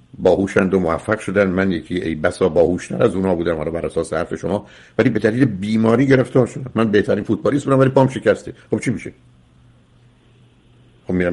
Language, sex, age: Persian, male, 60-79